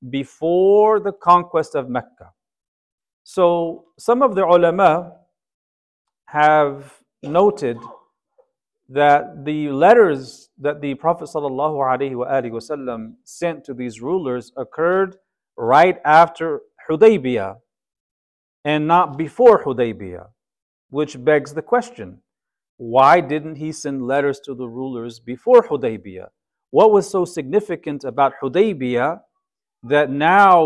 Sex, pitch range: male, 140-195 Hz